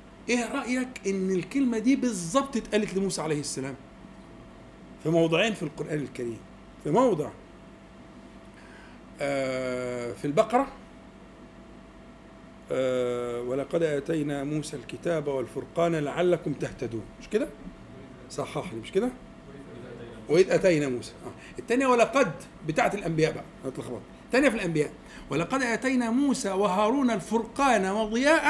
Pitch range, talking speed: 155-255 Hz, 100 wpm